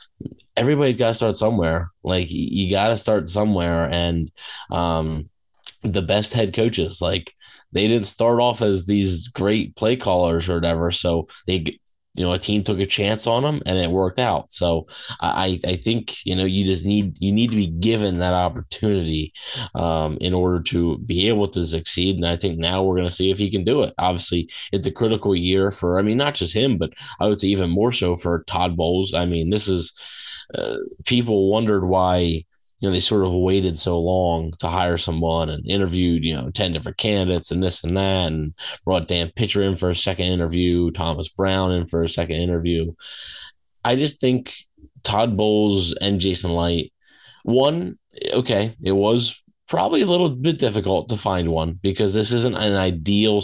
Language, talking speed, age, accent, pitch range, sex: English, 195 wpm, 20-39, American, 85-105 Hz, male